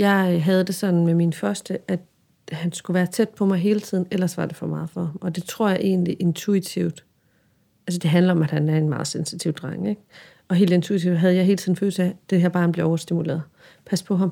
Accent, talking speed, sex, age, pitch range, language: native, 245 wpm, female, 40-59, 175-215 Hz, Danish